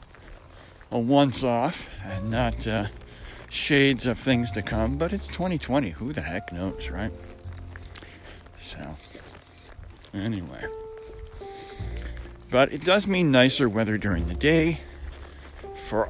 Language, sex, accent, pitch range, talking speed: English, male, American, 85-125 Hz, 110 wpm